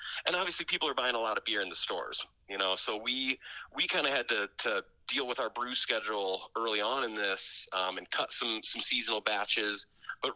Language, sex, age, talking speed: English, male, 30-49, 225 wpm